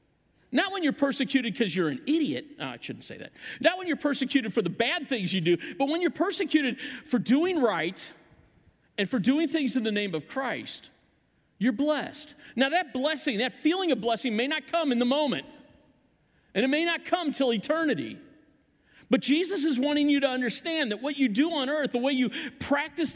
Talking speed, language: 200 wpm, English